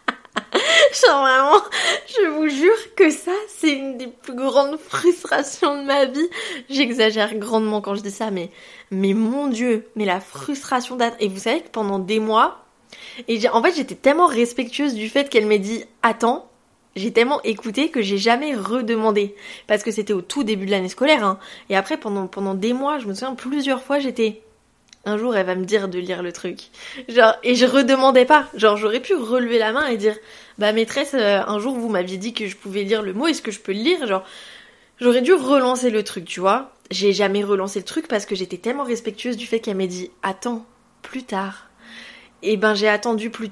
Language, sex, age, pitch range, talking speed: French, female, 20-39, 200-265 Hz, 210 wpm